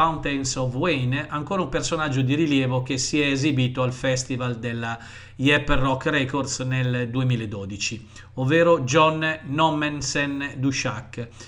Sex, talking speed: male, 125 wpm